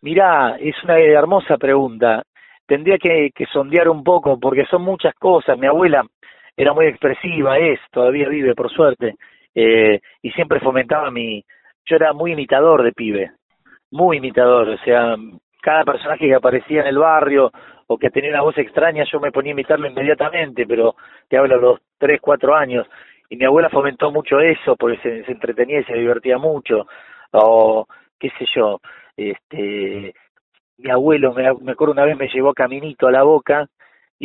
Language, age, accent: Spanish, 40-59, Argentinian